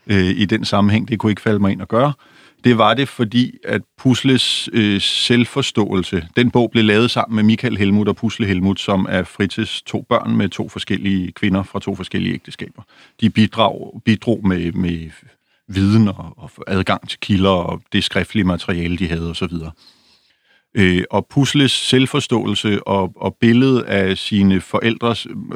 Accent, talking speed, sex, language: native, 160 wpm, male, Danish